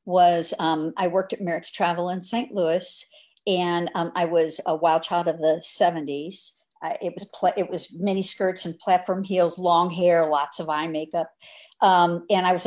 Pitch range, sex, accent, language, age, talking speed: 165-210 Hz, female, American, English, 50-69, 195 wpm